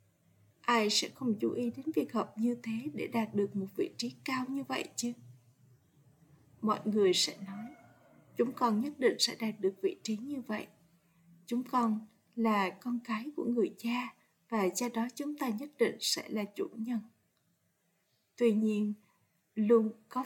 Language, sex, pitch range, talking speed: Vietnamese, female, 205-255 Hz, 170 wpm